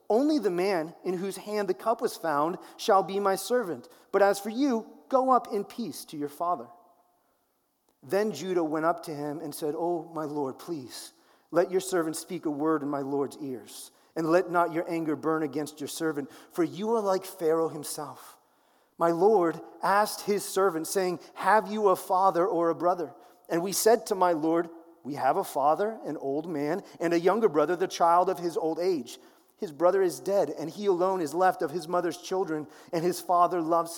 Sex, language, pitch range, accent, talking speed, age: male, English, 170-210 Hz, American, 205 wpm, 30-49